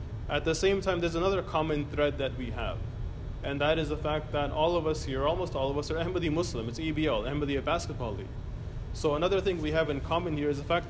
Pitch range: 130-160 Hz